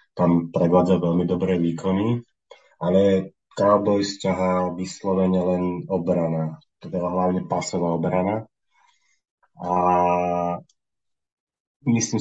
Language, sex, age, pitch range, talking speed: Slovak, male, 30-49, 90-100 Hz, 85 wpm